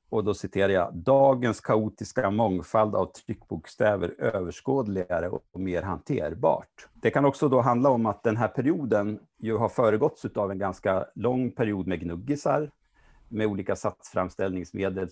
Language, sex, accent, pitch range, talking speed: Swedish, male, Norwegian, 90-120 Hz, 145 wpm